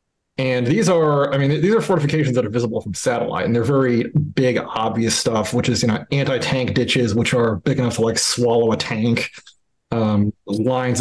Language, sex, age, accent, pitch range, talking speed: English, male, 30-49, American, 110-135 Hz, 200 wpm